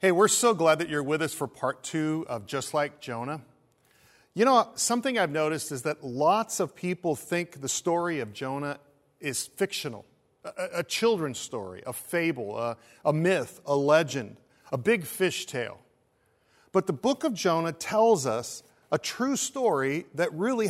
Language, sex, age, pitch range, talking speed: English, male, 40-59, 145-195 Hz, 170 wpm